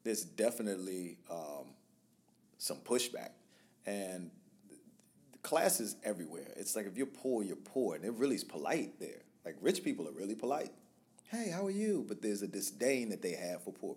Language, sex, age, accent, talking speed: English, male, 40-59, American, 180 wpm